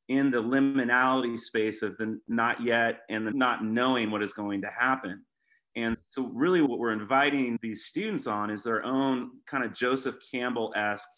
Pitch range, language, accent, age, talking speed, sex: 105-125 Hz, English, American, 30-49, 175 wpm, male